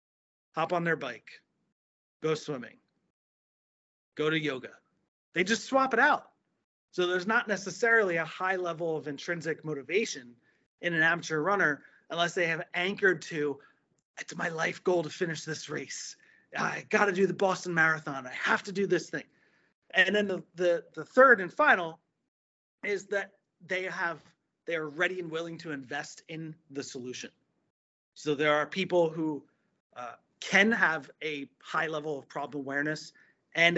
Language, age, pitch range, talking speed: English, 30-49, 150-185 Hz, 160 wpm